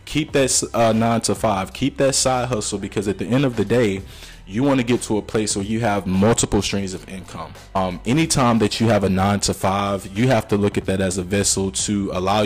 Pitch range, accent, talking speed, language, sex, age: 95-110 Hz, American, 245 wpm, English, male, 20-39